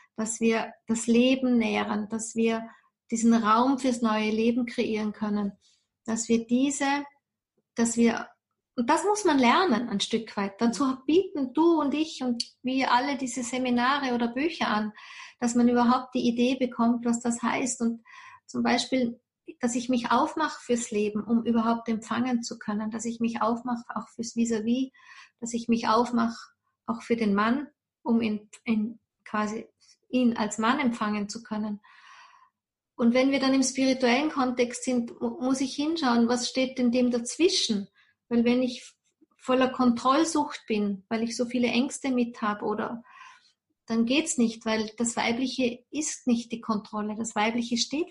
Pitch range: 225-260 Hz